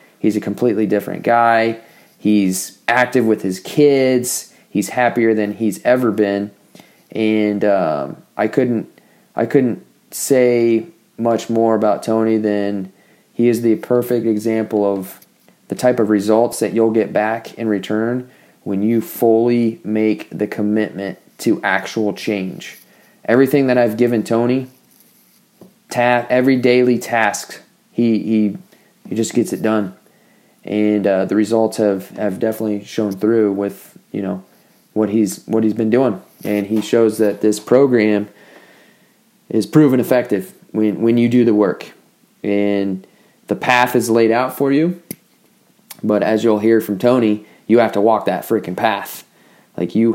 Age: 30-49